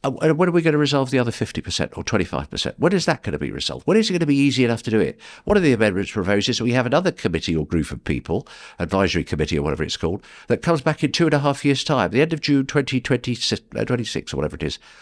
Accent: British